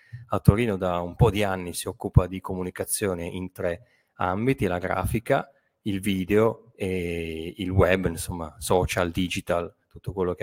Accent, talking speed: native, 155 wpm